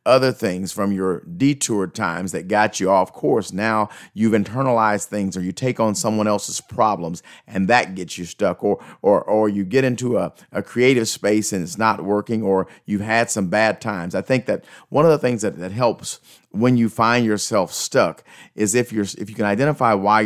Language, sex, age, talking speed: English, male, 40-59, 205 wpm